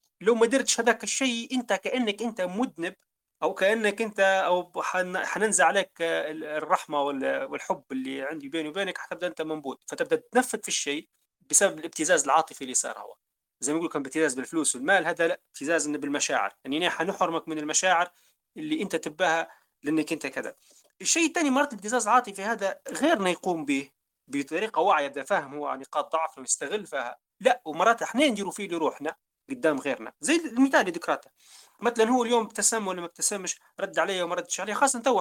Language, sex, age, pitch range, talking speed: Arabic, male, 30-49, 160-225 Hz, 165 wpm